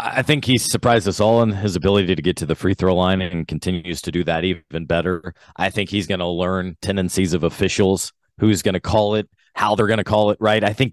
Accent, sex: American, male